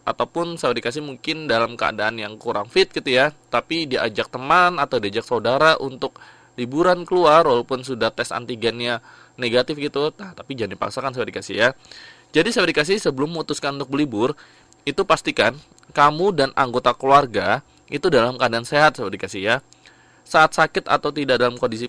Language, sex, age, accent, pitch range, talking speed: Indonesian, male, 20-39, native, 125-170 Hz, 160 wpm